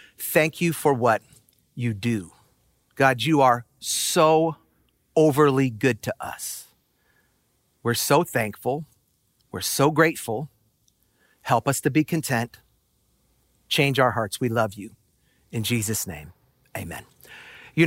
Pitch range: 115-160 Hz